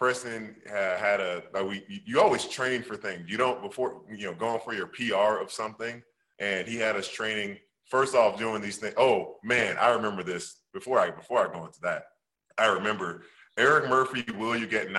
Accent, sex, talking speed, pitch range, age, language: American, male, 205 wpm, 95-120 Hz, 20-39, English